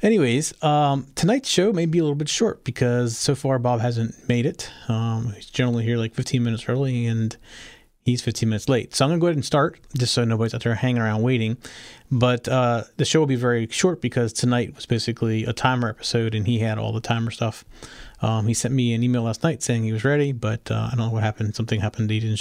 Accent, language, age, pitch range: American, English, 30-49, 115-140 Hz